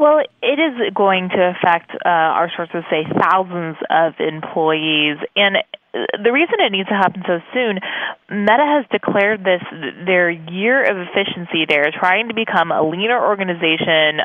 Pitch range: 155-190 Hz